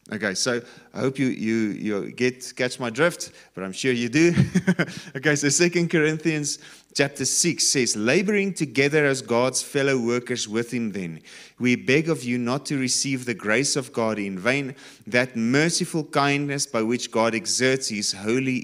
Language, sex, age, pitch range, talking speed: English, male, 30-49, 110-140 Hz, 175 wpm